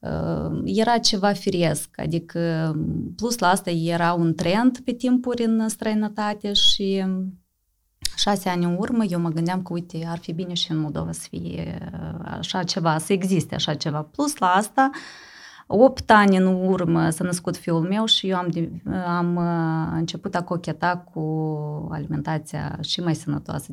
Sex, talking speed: female, 155 wpm